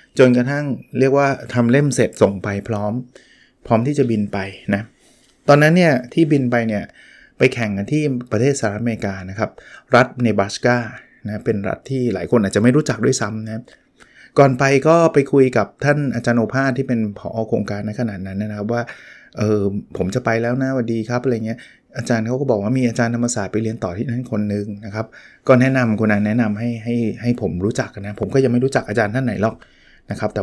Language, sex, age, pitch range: Thai, male, 20-39, 115-140 Hz